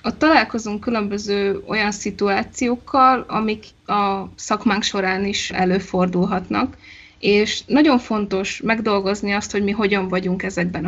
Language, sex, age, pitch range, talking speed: Hungarian, female, 20-39, 195-225 Hz, 115 wpm